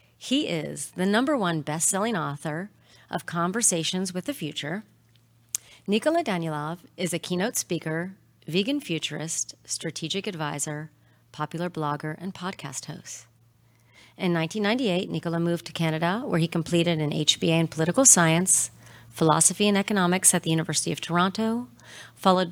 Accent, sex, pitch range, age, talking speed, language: American, female, 145-180 Hz, 40-59, 135 wpm, English